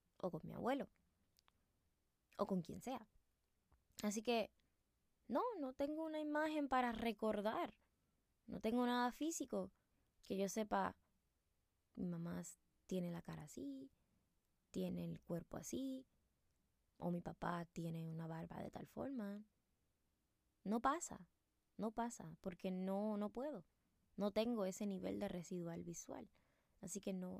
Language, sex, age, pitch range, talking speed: Spanish, female, 20-39, 175-225 Hz, 135 wpm